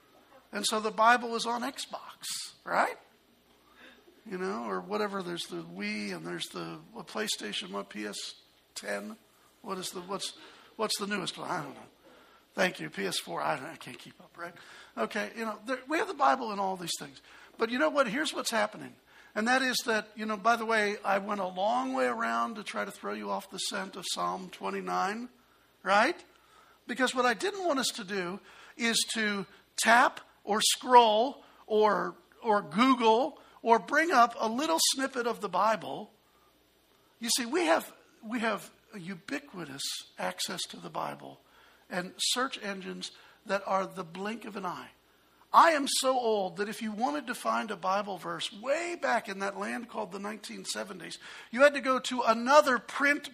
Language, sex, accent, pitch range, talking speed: English, male, American, 200-255 Hz, 180 wpm